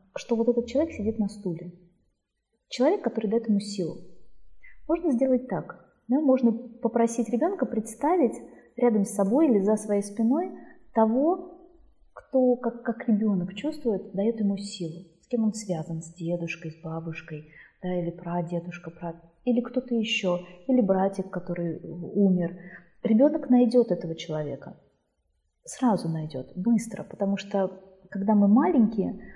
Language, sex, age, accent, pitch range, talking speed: Russian, female, 30-49, native, 190-245 Hz, 135 wpm